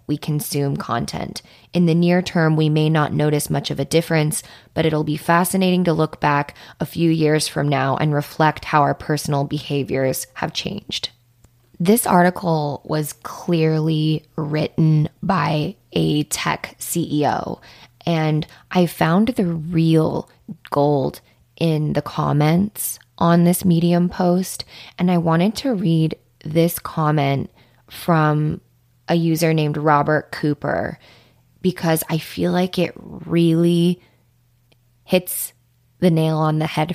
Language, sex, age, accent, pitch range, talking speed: English, female, 20-39, American, 145-170 Hz, 135 wpm